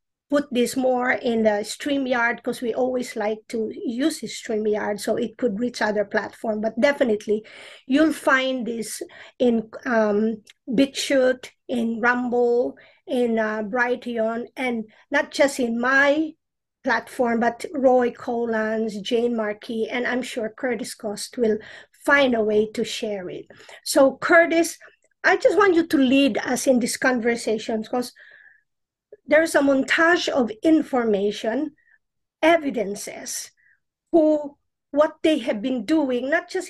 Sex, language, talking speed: female, English, 135 wpm